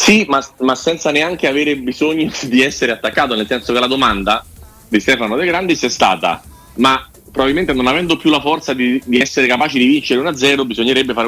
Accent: native